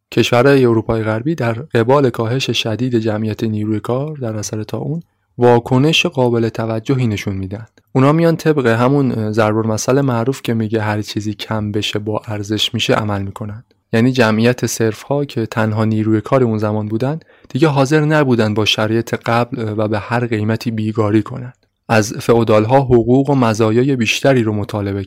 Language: Persian